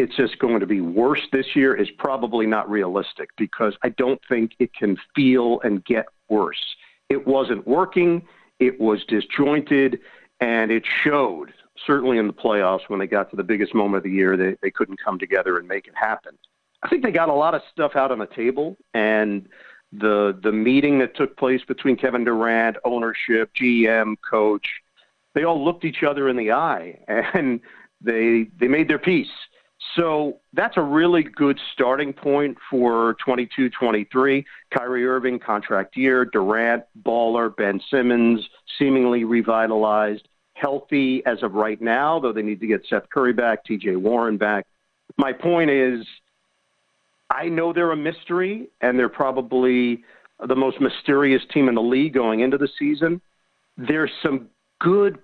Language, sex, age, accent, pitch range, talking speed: English, male, 50-69, American, 115-140 Hz, 165 wpm